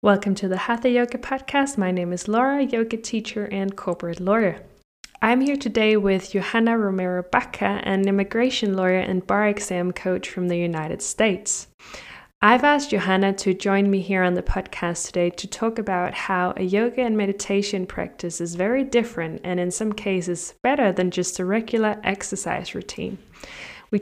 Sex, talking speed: female, 170 wpm